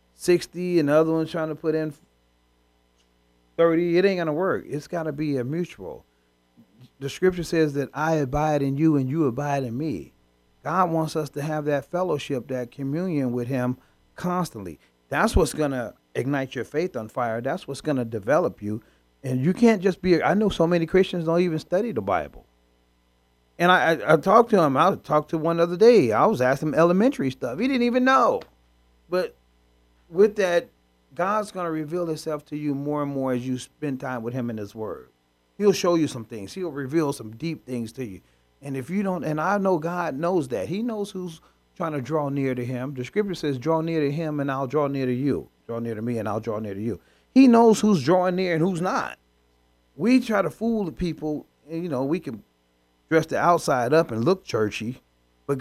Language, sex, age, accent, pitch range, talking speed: English, male, 40-59, American, 115-175 Hz, 220 wpm